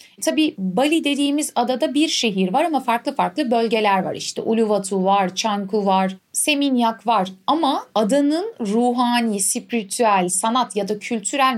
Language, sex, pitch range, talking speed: Turkish, female, 200-270 Hz, 140 wpm